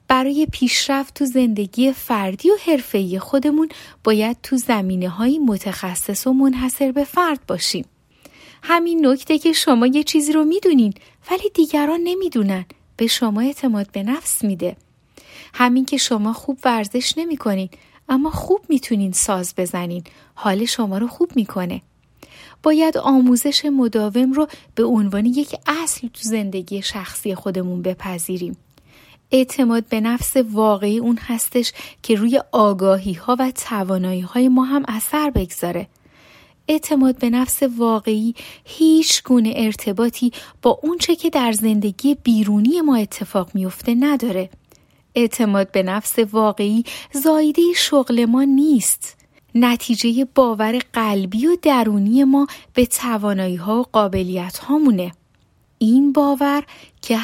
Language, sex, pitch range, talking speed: Persian, female, 210-280 Hz, 125 wpm